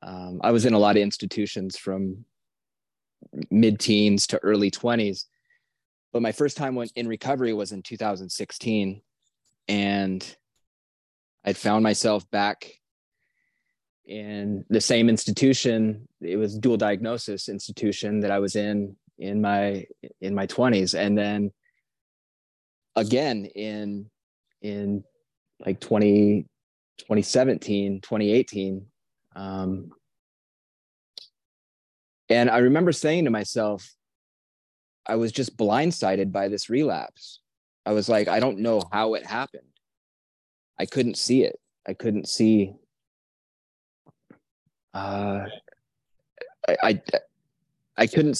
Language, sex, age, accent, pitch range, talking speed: English, male, 20-39, American, 100-115 Hz, 110 wpm